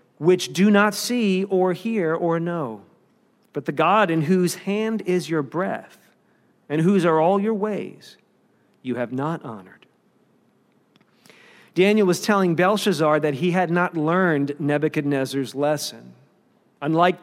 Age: 40-59